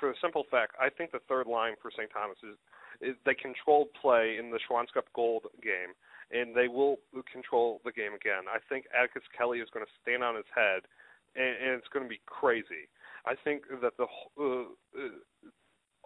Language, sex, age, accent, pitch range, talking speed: English, male, 30-49, American, 115-135 Hz, 195 wpm